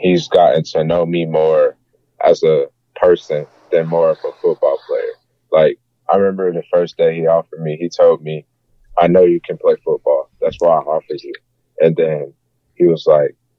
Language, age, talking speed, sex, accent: English, 20-39, 190 wpm, male, American